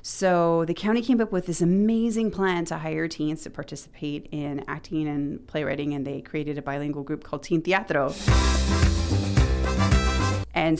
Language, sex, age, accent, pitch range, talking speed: English, female, 30-49, American, 145-180 Hz, 155 wpm